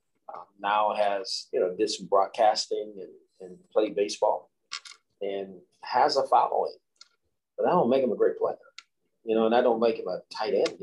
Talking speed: 190 wpm